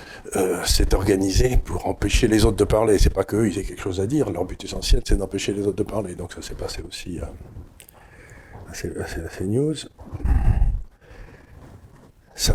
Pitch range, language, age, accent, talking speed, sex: 90-105 Hz, French, 60-79, French, 180 wpm, male